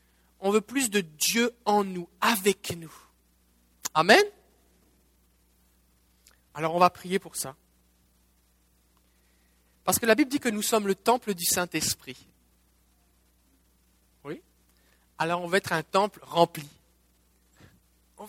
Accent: French